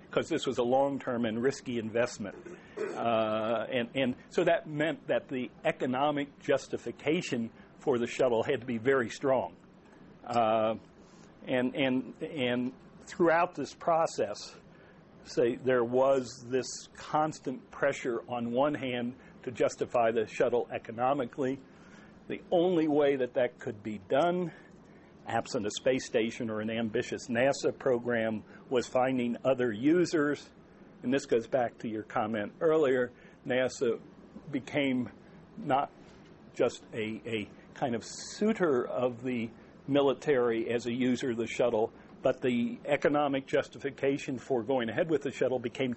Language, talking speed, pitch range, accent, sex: English, 135 wpm, 120-145 Hz, American, male